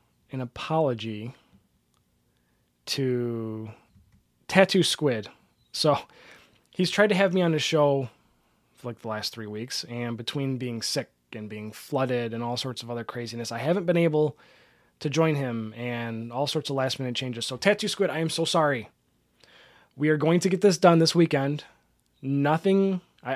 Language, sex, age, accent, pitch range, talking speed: English, male, 20-39, American, 120-160 Hz, 165 wpm